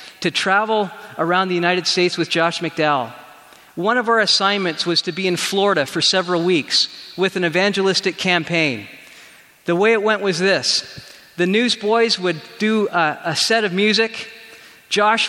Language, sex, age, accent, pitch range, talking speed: English, male, 40-59, American, 175-215 Hz, 160 wpm